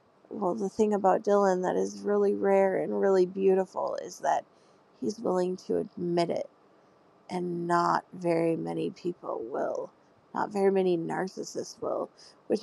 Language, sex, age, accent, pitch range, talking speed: English, female, 30-49, American, 180-225 Hz, 145 wpm